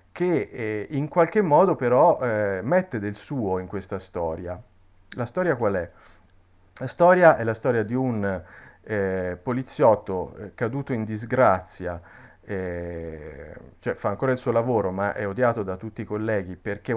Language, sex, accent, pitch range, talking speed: Italian, male, native, 90-115 Hz, 160 wpm